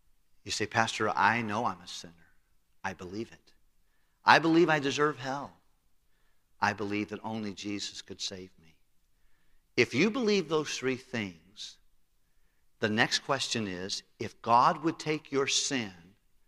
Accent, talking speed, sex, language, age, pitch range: American, 145 wpm, male, English, 50-69, 100-140 Hz